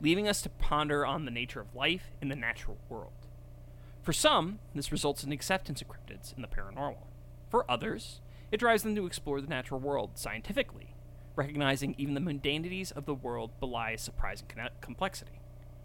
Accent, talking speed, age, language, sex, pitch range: American, 170 wpm, 30-49, English, male, 120-155 Hz